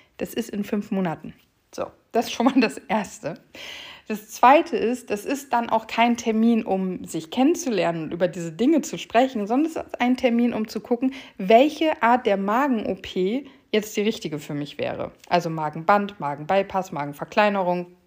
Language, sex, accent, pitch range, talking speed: German, female, German, 175-230 Hz, 175 wpm